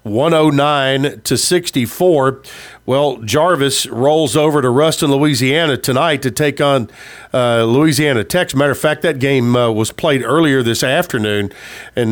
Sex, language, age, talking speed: male, English, 50-69, 170 wpm